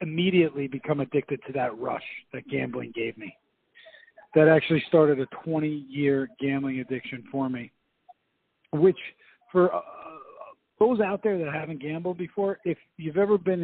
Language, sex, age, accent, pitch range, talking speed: English, male, 50-69, American, 145-170 Hz, 150 wpm